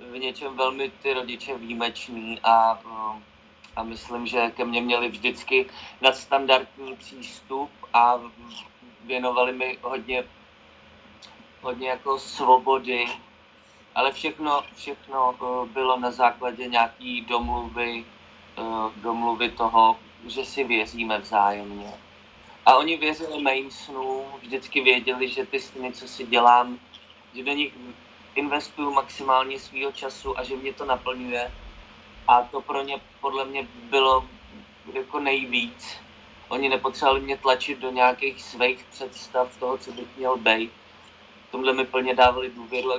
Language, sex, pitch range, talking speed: Czech, male, 120-135 Hz, 130 wpm